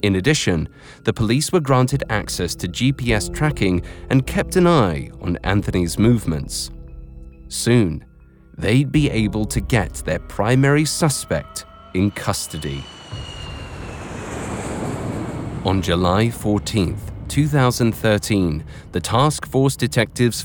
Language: English